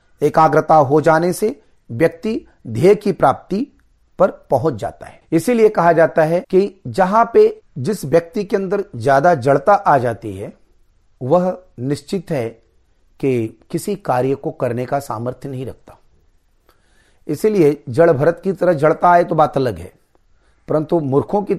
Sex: male